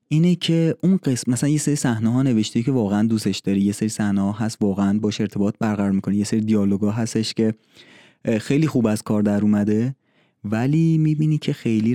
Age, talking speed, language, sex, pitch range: 20-39, 200 wpm, Persian, male, 105-130 Hz